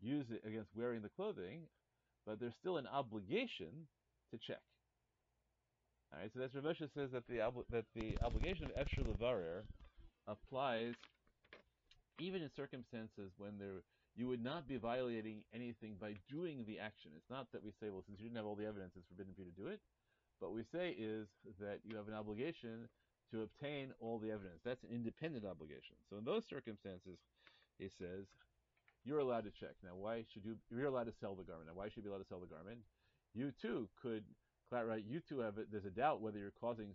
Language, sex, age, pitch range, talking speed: English, male, 40-59, 100-120 Hz, 205 wpm